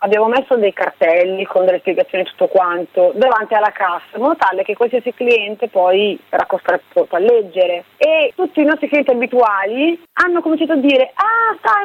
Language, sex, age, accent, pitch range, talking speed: Italian, female, 30-49, native, 210-285 Hz, 180 wpm